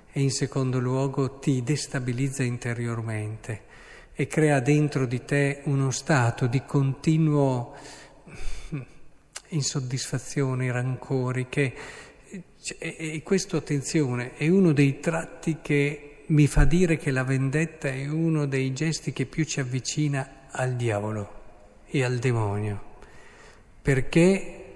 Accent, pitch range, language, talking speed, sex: native, 120-150 Hz, Italian, 115 wpm, male